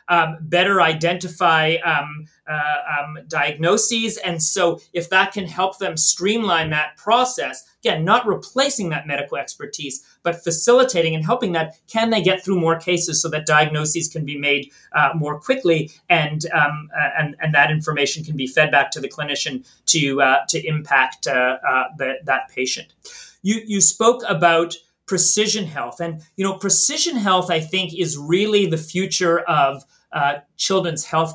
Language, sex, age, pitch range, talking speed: English, male, 40-59, 155-190 Hz, 165 wpm